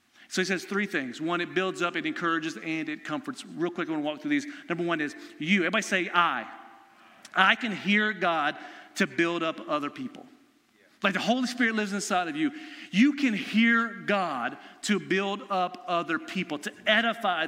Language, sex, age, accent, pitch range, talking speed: English, male, 40-59, American, 190-240 Hz, 195 wpm